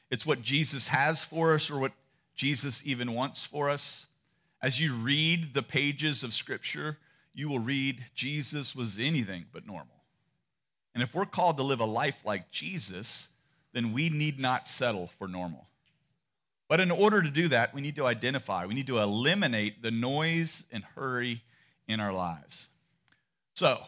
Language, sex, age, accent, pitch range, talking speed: English, male, 40-59, American, 120-150 Hz, 170 wpm